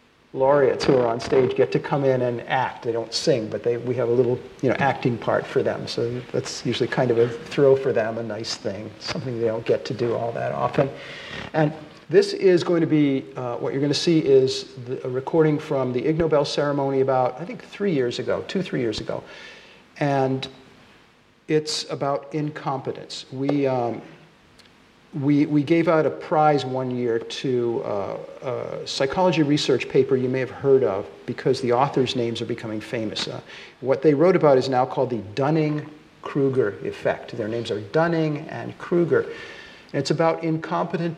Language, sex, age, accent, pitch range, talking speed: Danish, male, 50-69, American, 130-160 Hz, 190 wpm